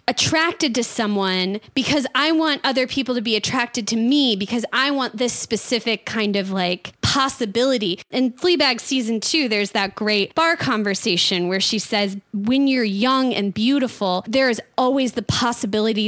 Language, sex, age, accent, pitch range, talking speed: English, female, 20-39, American, 210-275 Hz, 165 wpm